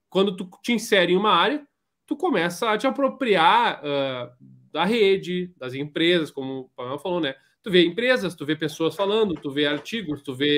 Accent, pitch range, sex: Brazilian, 150-215 Hz, male